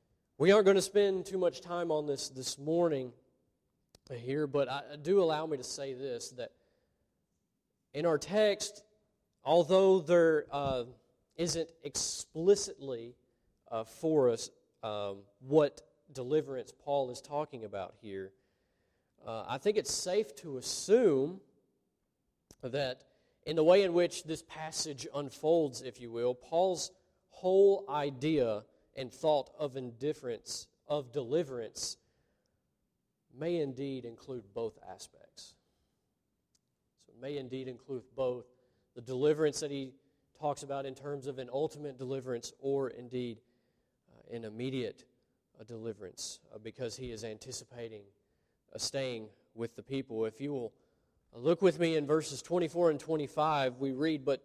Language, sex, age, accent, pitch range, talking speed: English, male, 40-59, American, 125-160 Hz, 135 wpm